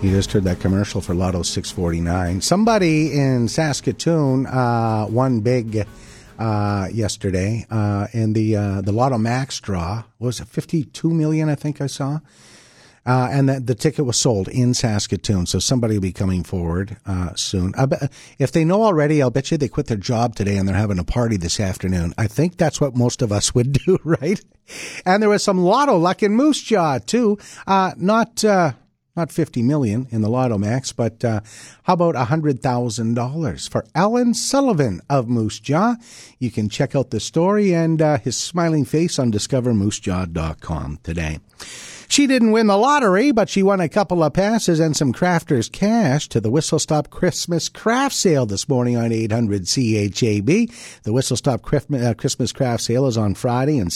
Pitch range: 110-165 Hz